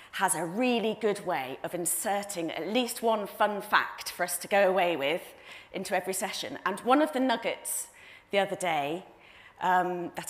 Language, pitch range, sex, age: English, 180-245 Hz, female, 30-49